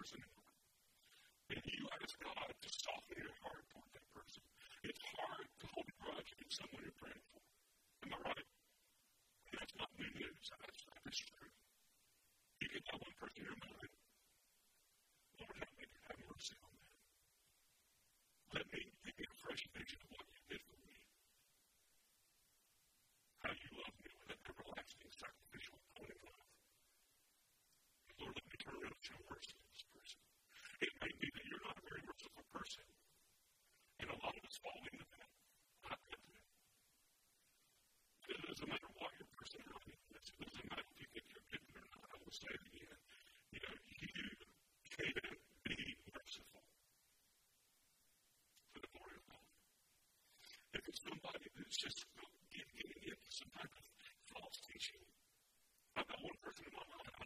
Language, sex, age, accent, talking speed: English, female, 40-59, American, 155 wpm